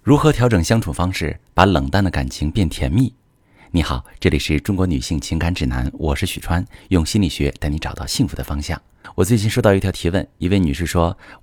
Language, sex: Chinese, male